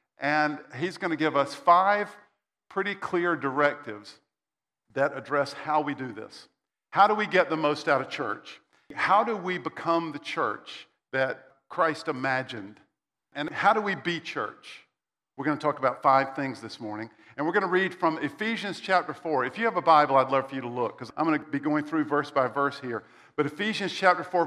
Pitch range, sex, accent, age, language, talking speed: 140-175 Hz, male, American, 50-69, English, 205 wpm